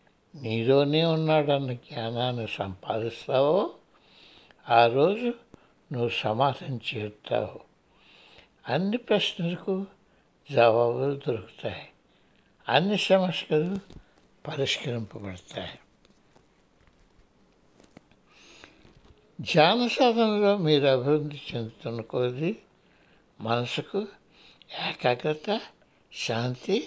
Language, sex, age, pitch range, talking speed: Telugu, male, 60-79, 125-185 Hz, 55 wpm